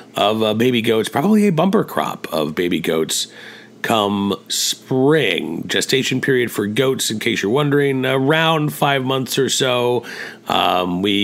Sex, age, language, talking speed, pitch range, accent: male, 40-59, English, 150 wpm, 100-140 Hz, American